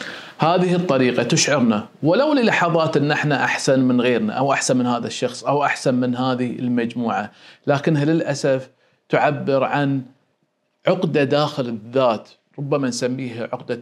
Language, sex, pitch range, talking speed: Arabic, male, 125-145 Hz, 130 wpm